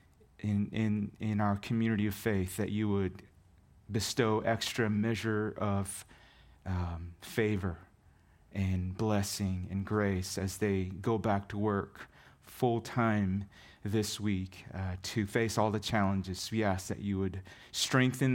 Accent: American